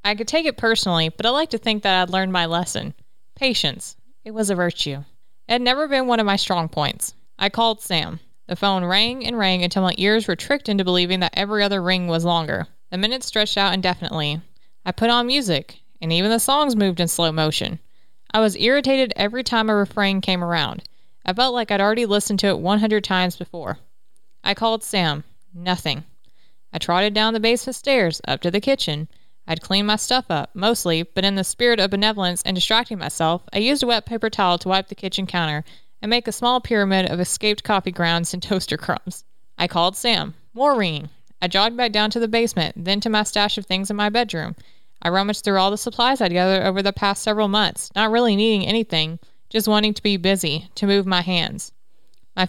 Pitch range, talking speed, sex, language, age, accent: 180-220 Hz, 215 wpm, female, English, 20-39, American